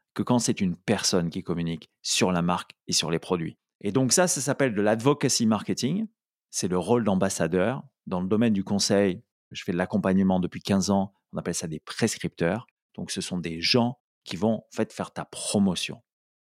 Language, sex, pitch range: French, male, 100-140 Hz